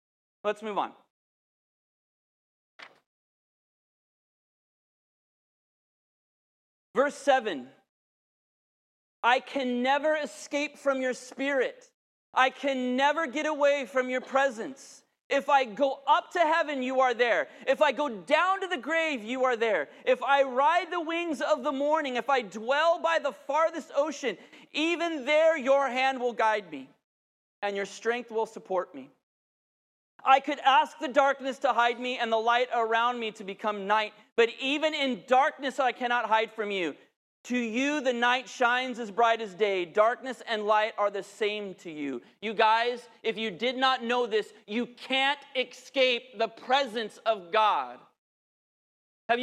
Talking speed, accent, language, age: 150 wpm, American, English, 30-49